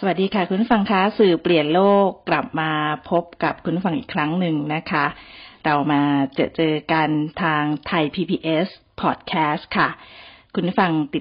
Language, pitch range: Thai, 150-180 Hz